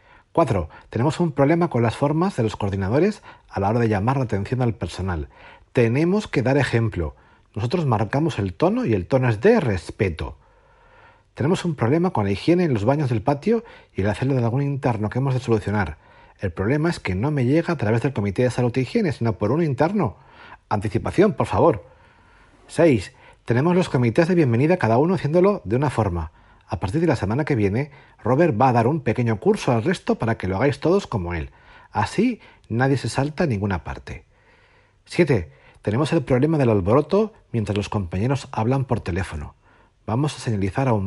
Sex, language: male, Spanish